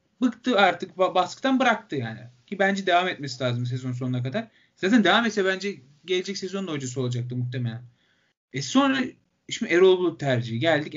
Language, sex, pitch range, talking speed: Turkish, male, 145-205 Hz, 155 wpm